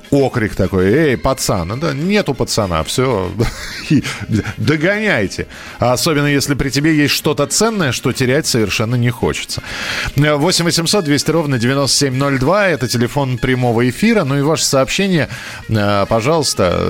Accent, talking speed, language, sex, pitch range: native, 115 wpm, Russian, male, 110-150 Hz